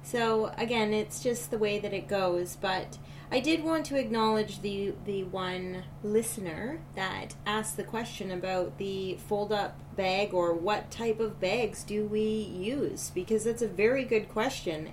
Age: 30-49